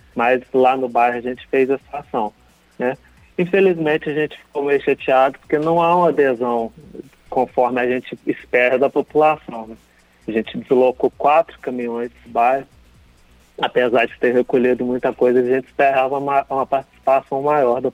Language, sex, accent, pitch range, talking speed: Portuguese, male, Brazilian, 125-150 Hz, 165 wpm